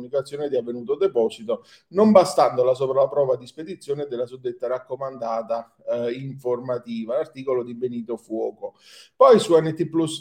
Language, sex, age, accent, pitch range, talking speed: Italian, male, 40-59, native, 125-170 Hz, 140 wpm